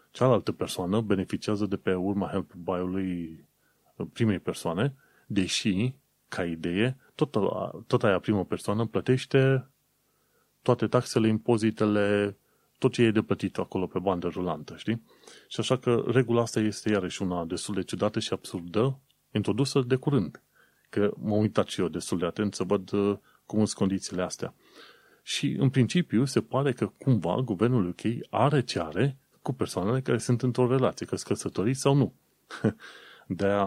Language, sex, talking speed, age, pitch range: Romanian, male, 145 wpm, 30-49, 95-125 Hz